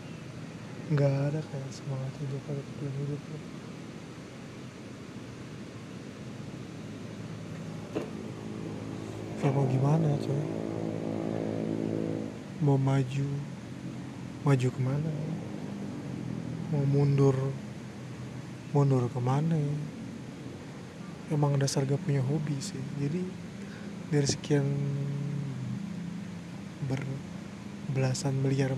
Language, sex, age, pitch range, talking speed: Indonesian, male, 20-39, 135-155 Hz, 75 wpm